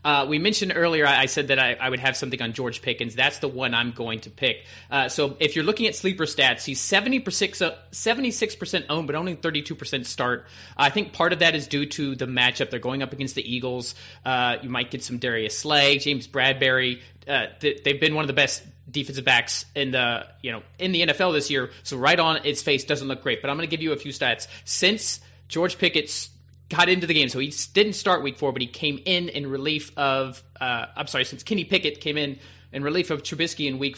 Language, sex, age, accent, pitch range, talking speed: English, male, 30-49, American, 135-175 Hz, 235 wpm